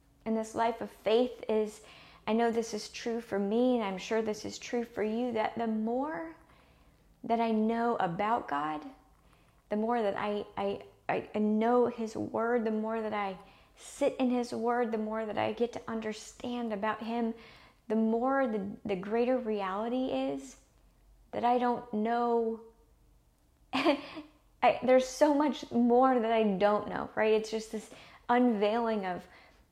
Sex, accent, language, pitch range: female, American, English, 210-235 Hz